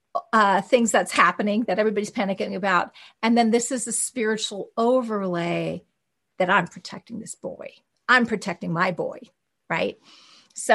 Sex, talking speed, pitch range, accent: female, 145 wpm, 205-260 Hz, American